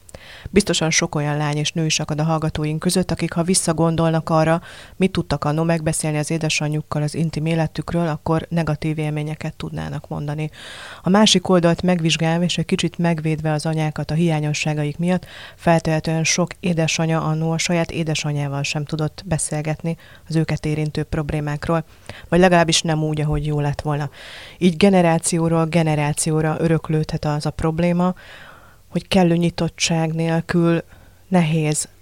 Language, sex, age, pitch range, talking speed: Hungarian, female, 30-49, 150-170 Hz, 140 wpm